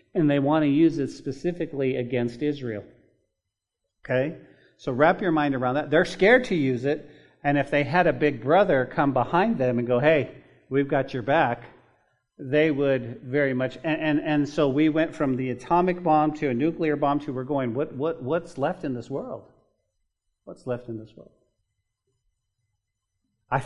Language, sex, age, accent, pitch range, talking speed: English, male, 40-59, American, 130-160 Hz, 185 wpm